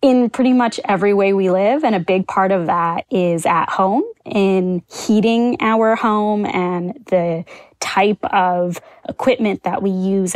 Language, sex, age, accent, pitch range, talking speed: English, female, 20-39, American, 180-215 Hz, 160 wpm